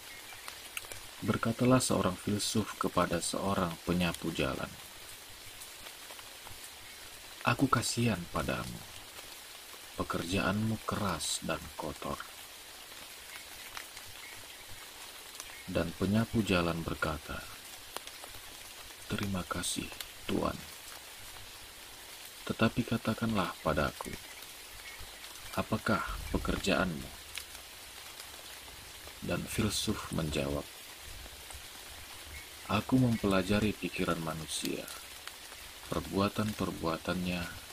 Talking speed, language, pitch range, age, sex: 55 wpm, Indonesian, 80-105 Hz, 40-59, male